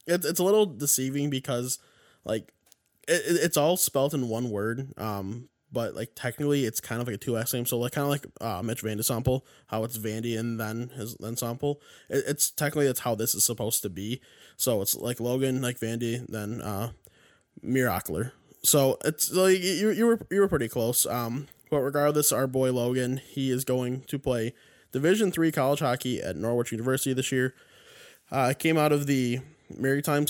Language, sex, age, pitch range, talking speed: English, male, 20-39, 115-140 Hz, 185 wpm